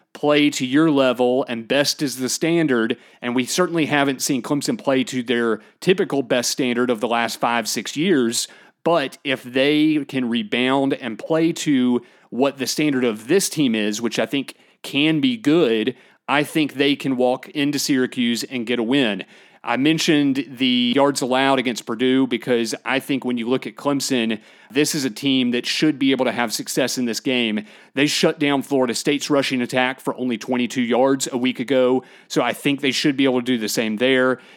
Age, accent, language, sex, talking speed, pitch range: 30-49, American, English, male, 200 wpm, 120-145 Hz